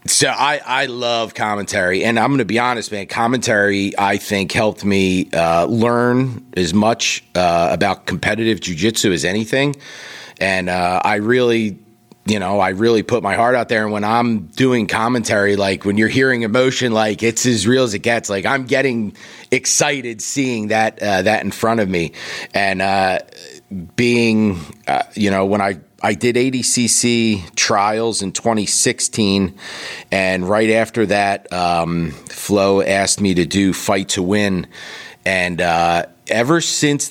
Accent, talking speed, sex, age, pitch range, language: American, 160 wpm, male, 40-59, 95-120 Hz, English